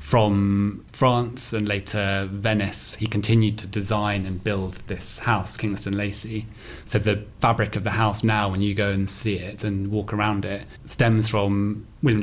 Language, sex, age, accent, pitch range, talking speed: English, male, 20-39, British, 100-115 Hz, 170 wpm